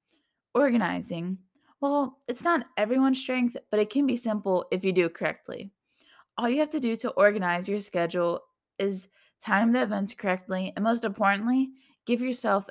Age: 20-39